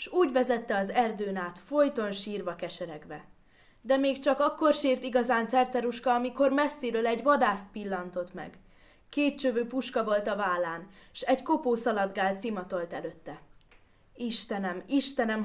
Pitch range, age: 190-260 Hz, 20-39